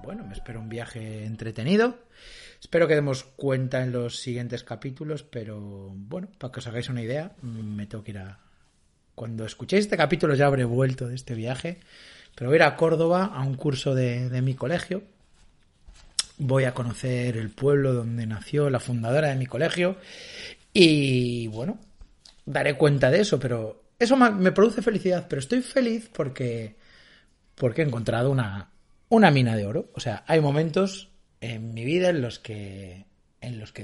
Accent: Spanish